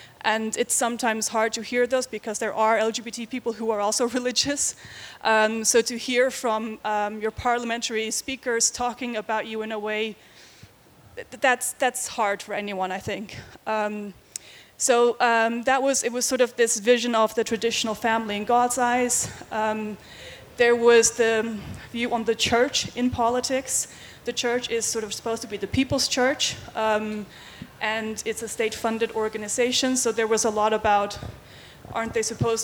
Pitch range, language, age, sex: 215-245 Hz, Danish, 20-39, female